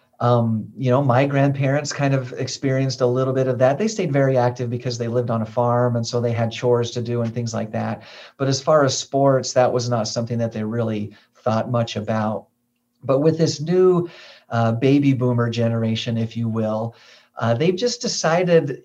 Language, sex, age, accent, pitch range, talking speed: English, male, 40-59, American, 120-140 Hz, 205 wpm